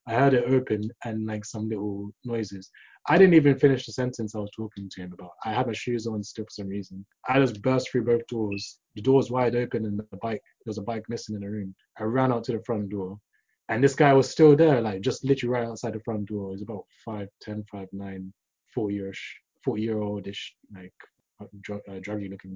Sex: male